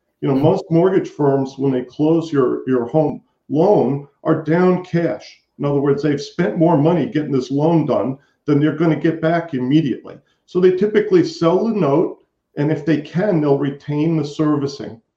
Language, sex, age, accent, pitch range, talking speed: English, male, 50-69, American, 135-165 Hz, 180 wpm